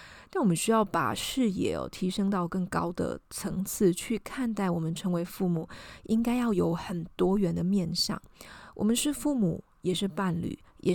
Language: Chinese